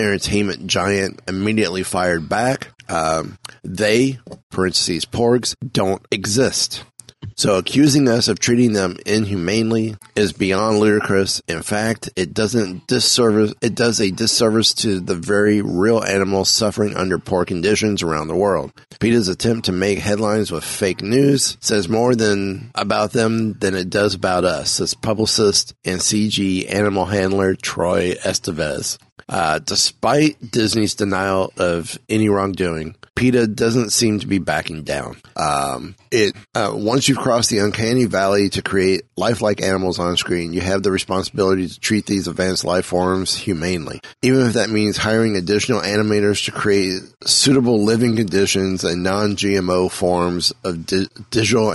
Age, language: 30-49, English